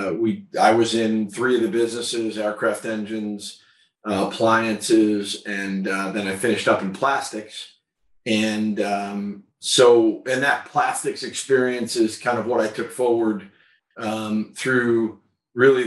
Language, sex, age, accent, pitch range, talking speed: English, male, 40-59, American, 110-125 Hz, 145 wpm